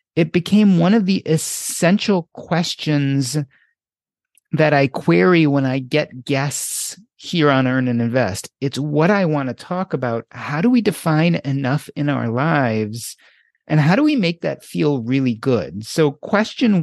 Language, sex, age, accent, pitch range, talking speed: English, male, 30-49, American, 130-180 Hz, 160 wpm